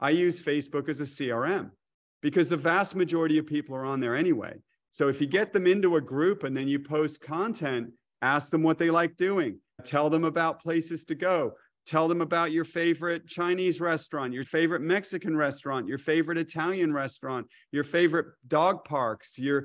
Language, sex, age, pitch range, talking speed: English, male, 40-59, 135-165 Hz, 185 wpm